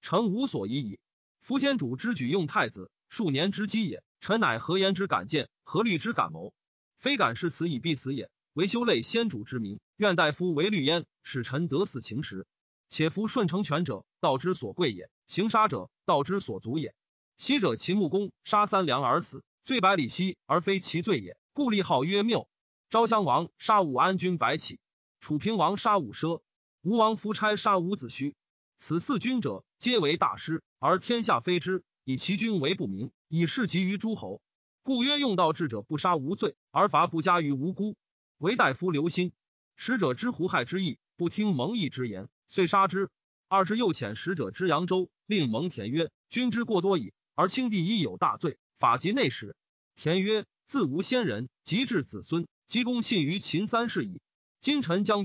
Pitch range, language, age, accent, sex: 160-215 Hz, Chinese, 30-49, native, male